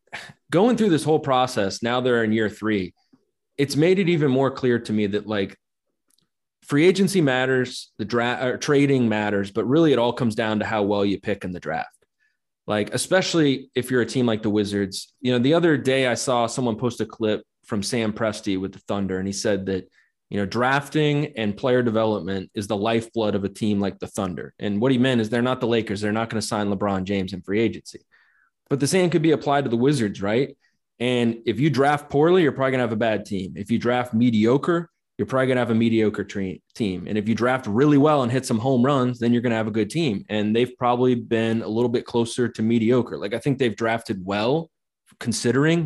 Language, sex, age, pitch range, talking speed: English, male, 20-39, 105-130 Hz, 230 wpm